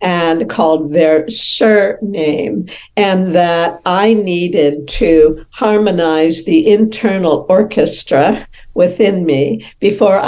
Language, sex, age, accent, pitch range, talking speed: English, female, 60-79, American, 155-205 Hz, 95 wpm